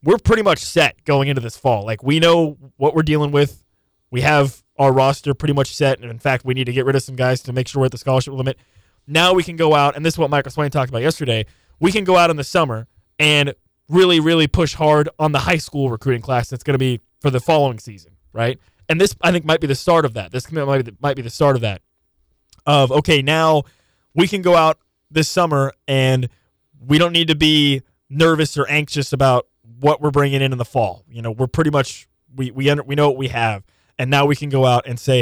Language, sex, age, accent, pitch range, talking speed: English, male, 20-39, American, 125-155 Hz, 250 wpm